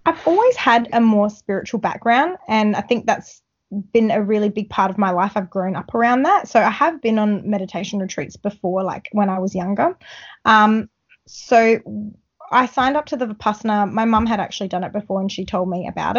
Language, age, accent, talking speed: English, 20-39, Australian, 210 wpm